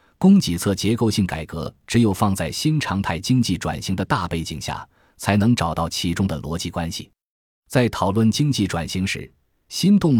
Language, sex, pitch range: Chinese, male, 85-120 Hz